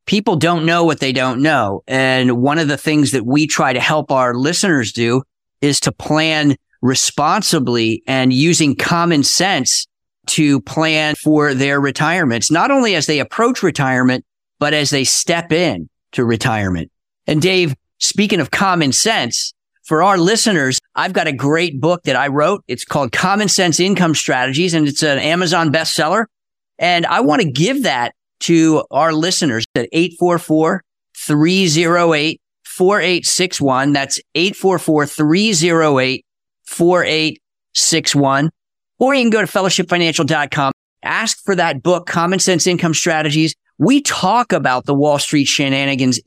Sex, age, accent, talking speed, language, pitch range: male, 50-69, American, 140 wpm, English, 135-175 Hz